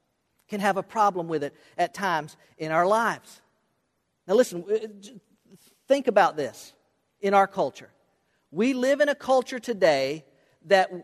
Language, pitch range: English, 185-240 Hz